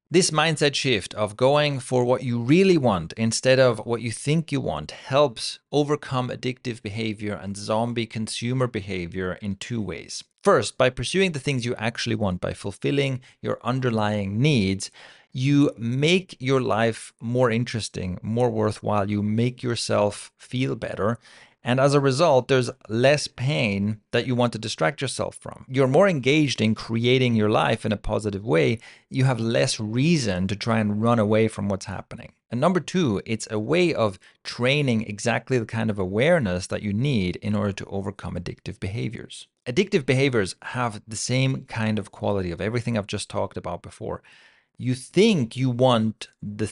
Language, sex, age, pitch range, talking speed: English, male, 30-49, 105-130 Hz, 170 wpm